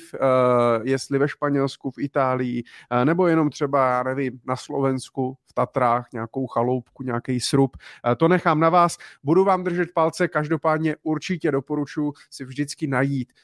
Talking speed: 145 wpm